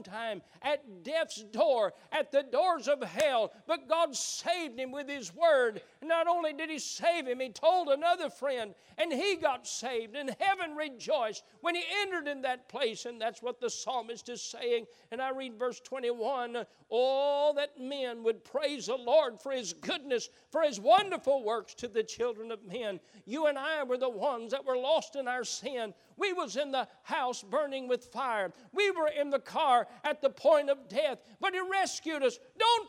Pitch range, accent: 180-290 Hz, American